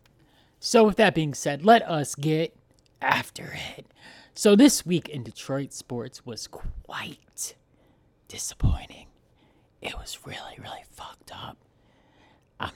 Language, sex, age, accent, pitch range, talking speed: English, male, 30-49, American, 135-190 Hz, 120 wpm